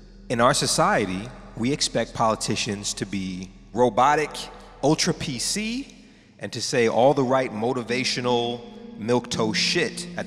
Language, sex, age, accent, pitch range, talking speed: English, male, 30-49, American, 110-155 Hz, 115 wpm